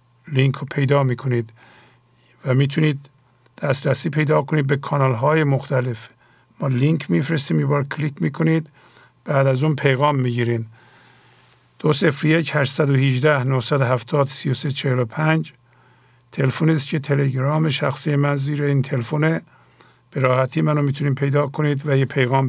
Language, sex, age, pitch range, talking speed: English, male, 50-69, 125-150 Hz, 140 wpm